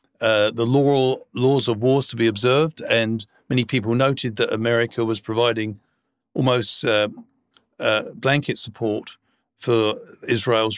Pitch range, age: 115-135 Hz, 50-69